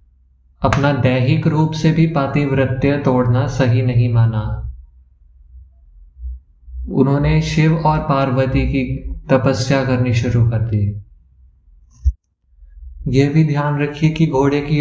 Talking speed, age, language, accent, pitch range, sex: 110 wpm, 20-39, Hindi, native, 100-145 Hz, male